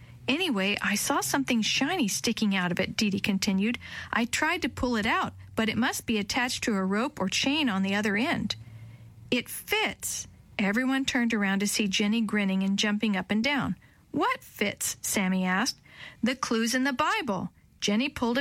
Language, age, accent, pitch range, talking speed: English, 50-69, American, 200-255 Hz, 185 wpm